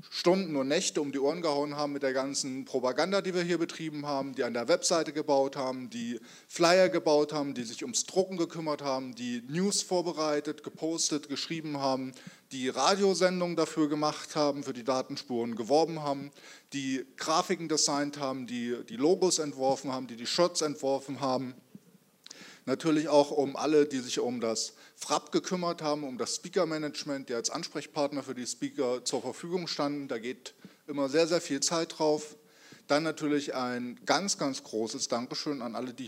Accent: German